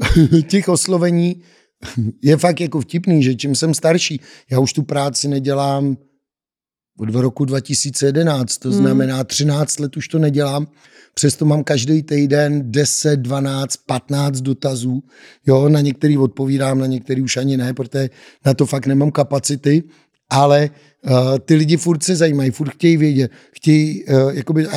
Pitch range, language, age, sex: 135-150 Hz, Czech, 30-49, male